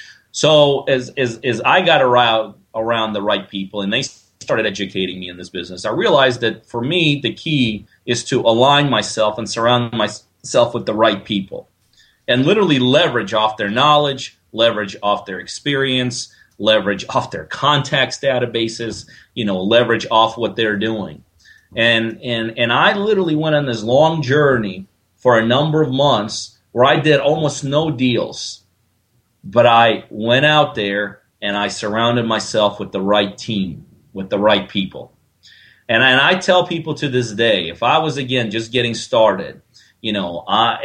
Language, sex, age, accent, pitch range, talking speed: English, male, 30-49, American, 100-125 Hz, 170 wpm